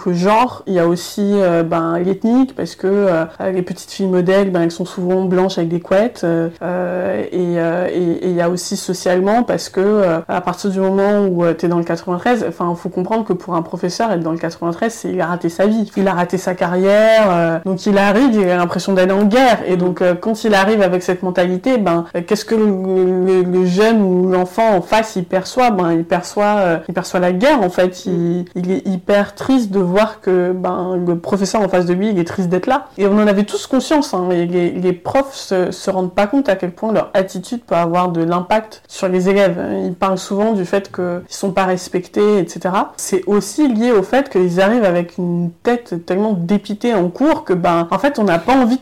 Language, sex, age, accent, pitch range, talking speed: French, female, 20-39, French, 180-205 Hz, 235 wpm